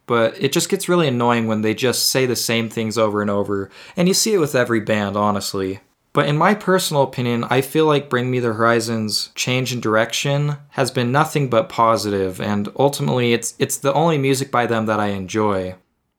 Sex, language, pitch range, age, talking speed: male, English, 115-145 Hz, 20-39, 210 wpm